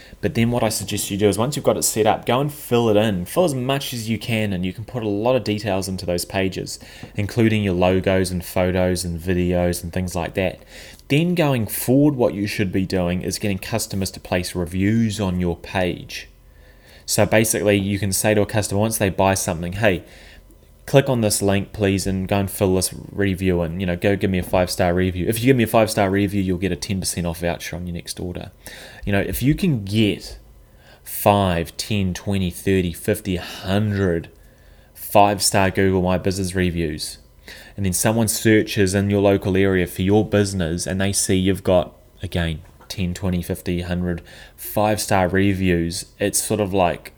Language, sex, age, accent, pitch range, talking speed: English, male, 20-39, Australian, 90-105 Hz, 200 wpm